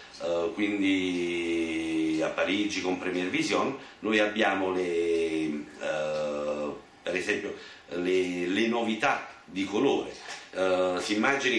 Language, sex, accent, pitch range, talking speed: Italian, male, native, 95-135 Hz, 110 wpm